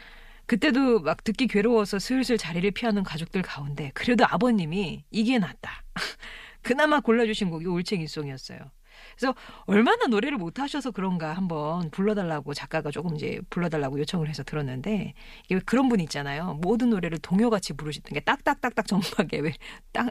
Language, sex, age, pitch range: Korean, female, 40-59, 165-225 Hz